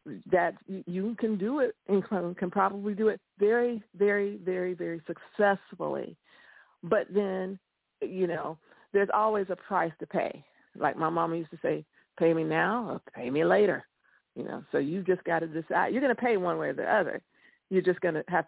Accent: American